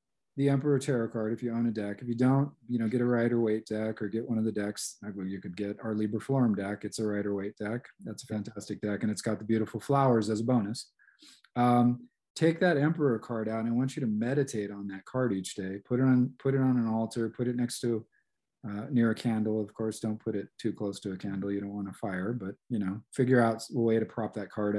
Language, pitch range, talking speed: English, 105-125 Hz, 270 wpm